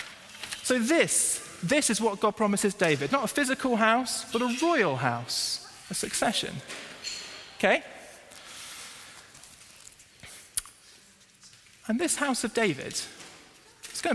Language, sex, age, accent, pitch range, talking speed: English, male, 20-39, British, 145-205 Hz, 110 wpm